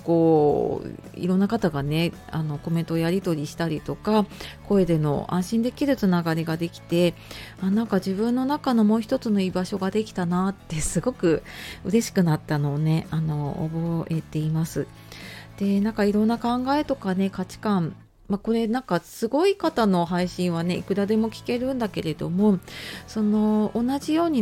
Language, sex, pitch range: Japanese, female, 165-215 Hz